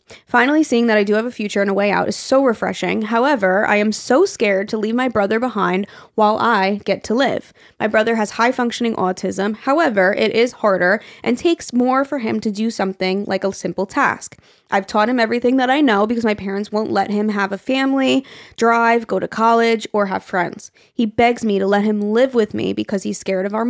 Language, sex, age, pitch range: English, female, 20-39, 200-245 Hz